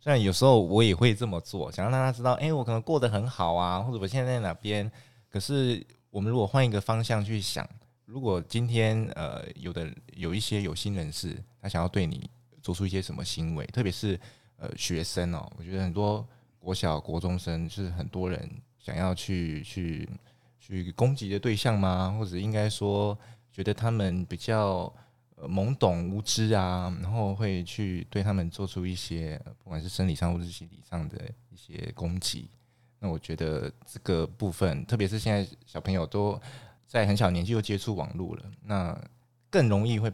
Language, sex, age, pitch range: Chinese, male, 20-39, 90-115 Hz